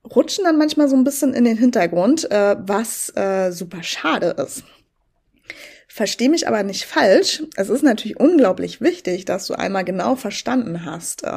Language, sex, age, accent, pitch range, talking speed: German, female, 20-39, German, 185-255 Hz, 155 wpm